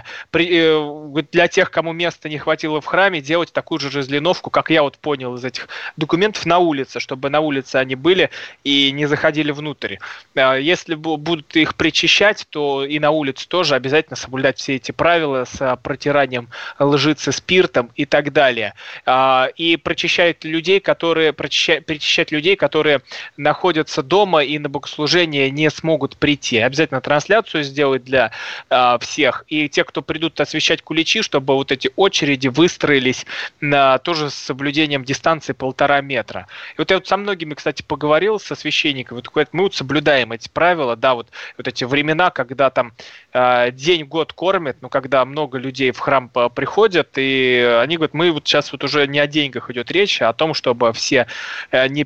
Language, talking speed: Russian, 160 wpm